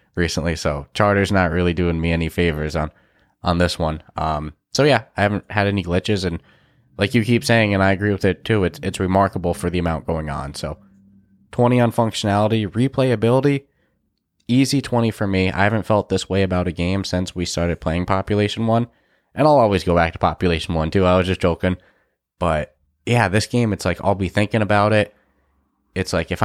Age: 20-39